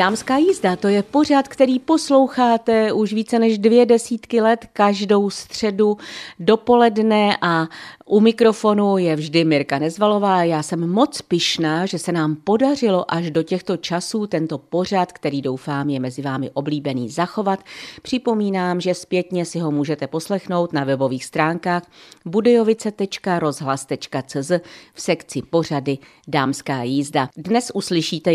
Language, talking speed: Czech, 130 wpm